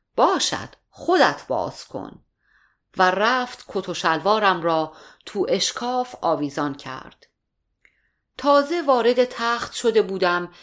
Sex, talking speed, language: female, 100 wpm, Persian